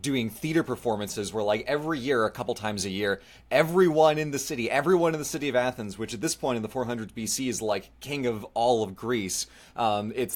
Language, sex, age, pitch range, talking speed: English, male, 30-49, 105-130 Hz, 225 wpm